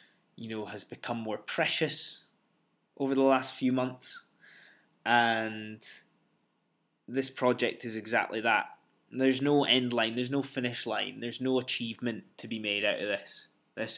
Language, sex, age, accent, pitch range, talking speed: English, male, 20-39, British, 115-135 Hz, 150 wpm